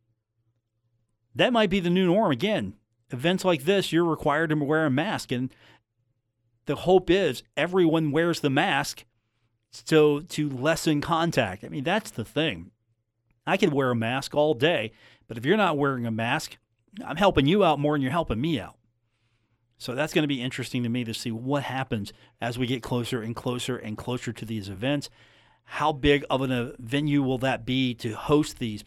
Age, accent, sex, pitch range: 40-59, American, male, 115-155 Hz